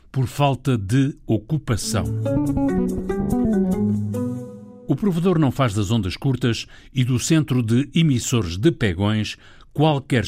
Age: 60-79